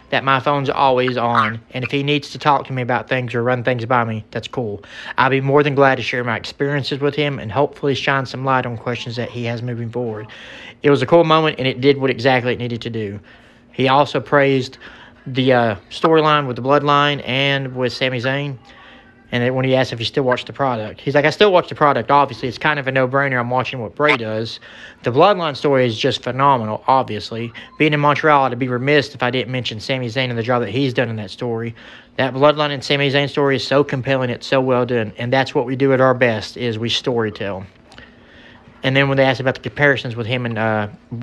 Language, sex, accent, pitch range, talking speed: English, male, American, 120-140 Hz, 240 wpm